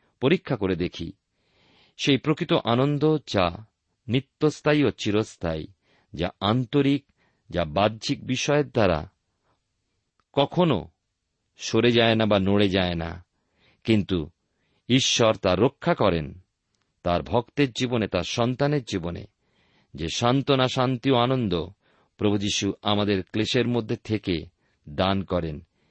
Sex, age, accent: male, 50-69, native